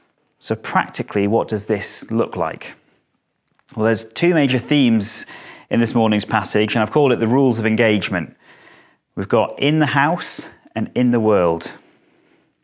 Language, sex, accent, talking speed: English, male, British, 155 wpm